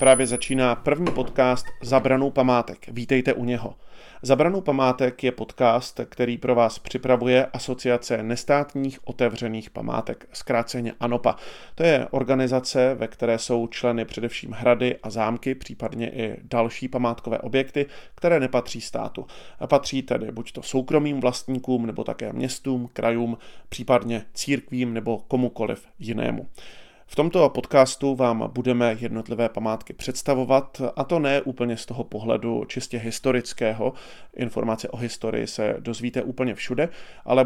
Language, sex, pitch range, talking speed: Czech, male, 115-135 Hz, 135 wpm